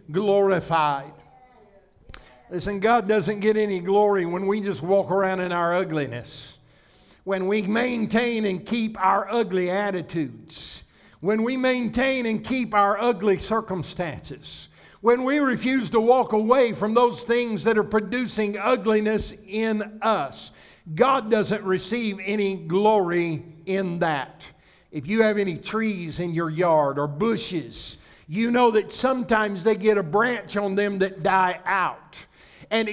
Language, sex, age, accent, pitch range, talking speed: English, male, 60-79, American, 190-240 Hz, 140 wpm